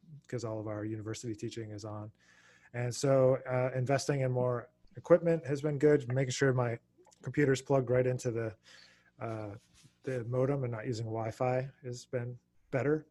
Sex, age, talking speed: male, 20-39, 165 wpm